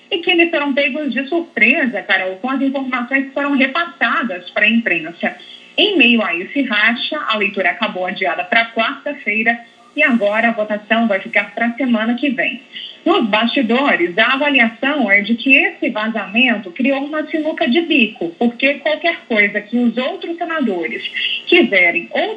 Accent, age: Brazilian, 30-49